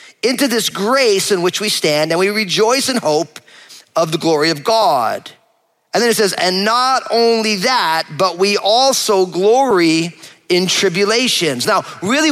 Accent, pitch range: American, 175-230 Hz